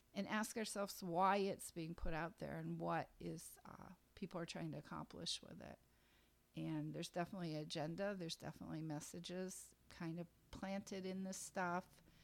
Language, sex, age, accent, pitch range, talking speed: English, female, 50-69, American, 170-220 Hz, 160 wpm